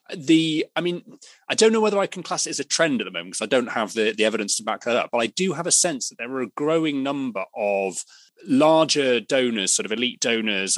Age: 30-49